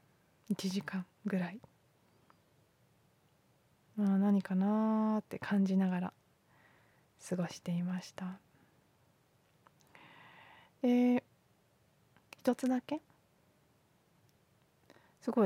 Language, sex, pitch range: Japanese, female, 185-245 Hz